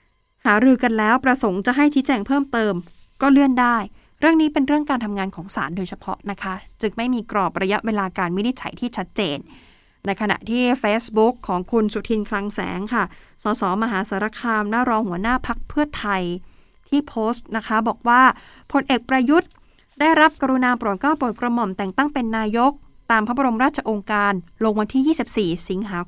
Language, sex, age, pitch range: Thai, female, 20-39, 195-245 Hz